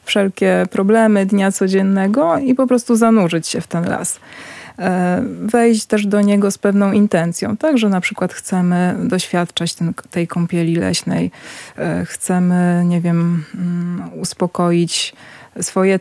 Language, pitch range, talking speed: Polish, 175-205 Hz, 125 wpm